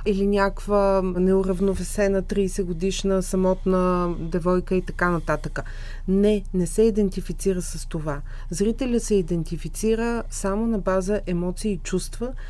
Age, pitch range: 40-59, 175-220 Hz